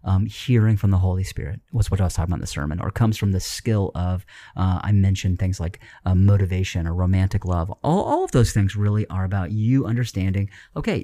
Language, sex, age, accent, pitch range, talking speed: English, male, 30-49, American, 95-115 Hz, 230 wpm